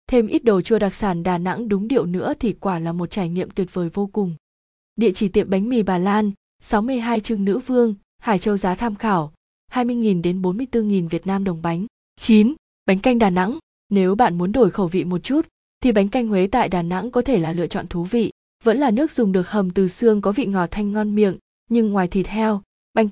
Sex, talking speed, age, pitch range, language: female, 235 wpm, 20-39, 185-225 Hz, Vietnamese